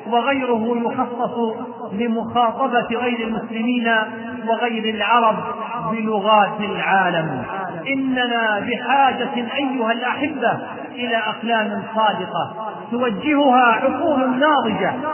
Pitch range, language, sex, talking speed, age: 225-270 Hz, Arabic, male, 75 wpm, 40-59